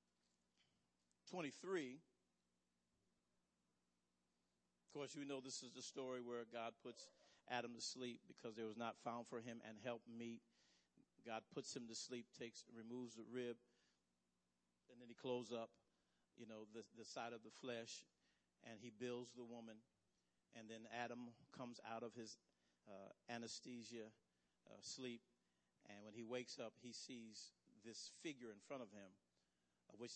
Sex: male